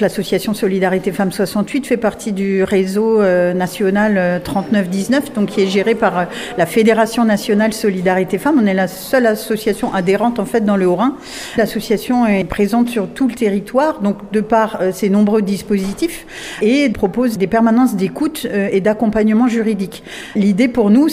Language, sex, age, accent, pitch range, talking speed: French, female, 40-59, French, 195-230 Hz, 155 wpm